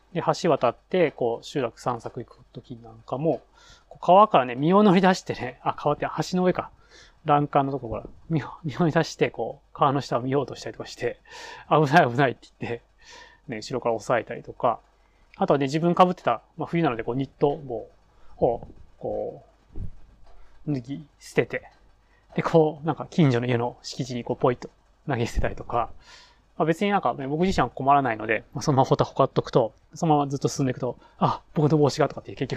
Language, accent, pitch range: Japanese, native, 120-175 Hz